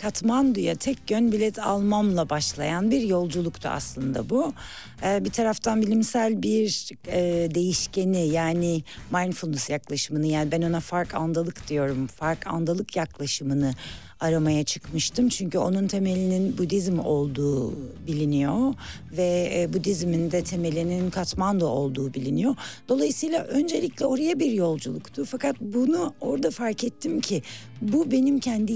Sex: female